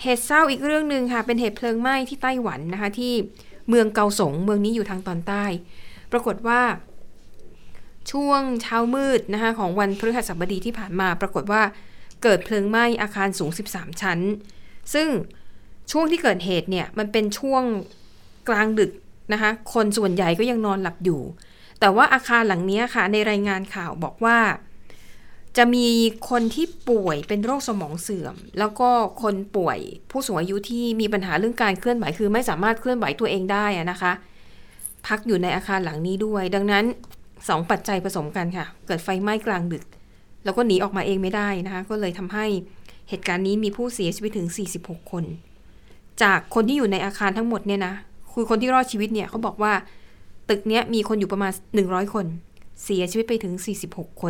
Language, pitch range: Thai, 185-230 Hz